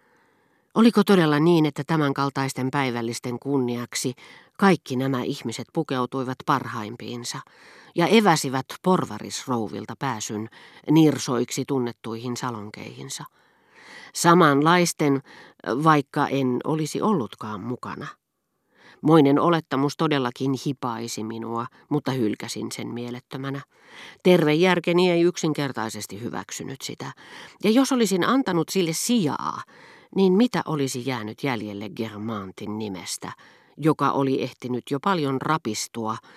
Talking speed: 95 wpm